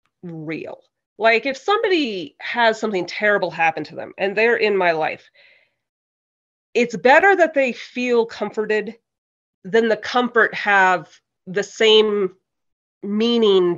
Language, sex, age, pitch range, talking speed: English, female, 30-49, 180-240 Hz, 120 wpm